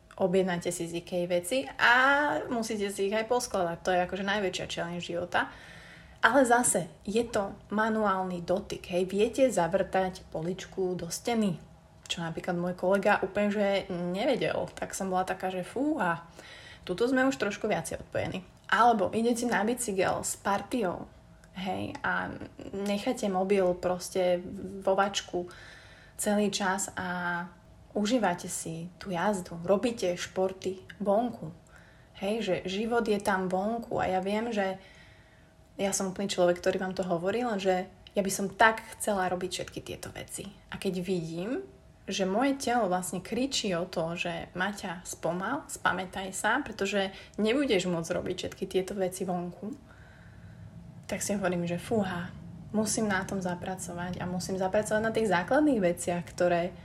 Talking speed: 145 wpm